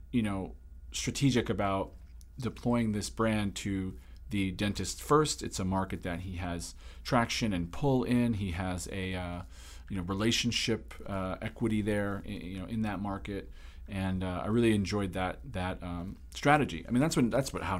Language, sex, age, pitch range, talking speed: English, male, 40-59, 85-110 Hz, 175 wpm